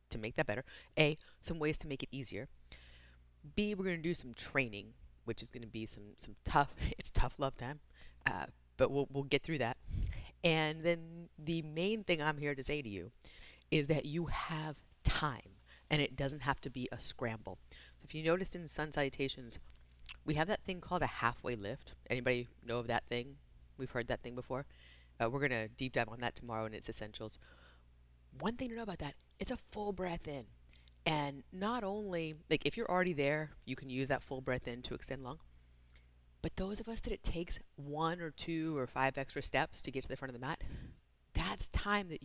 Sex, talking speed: female, 215 wpm